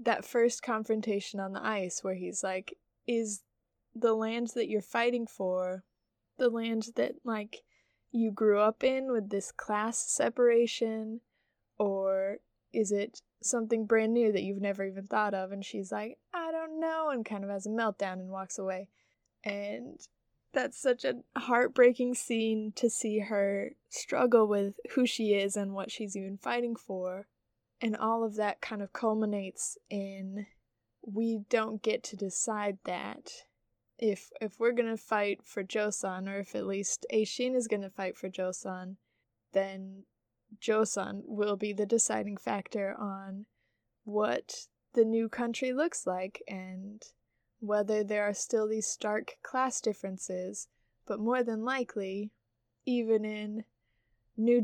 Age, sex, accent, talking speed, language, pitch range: 20-39, female, American, 150 wpm, English, 195-230 Hz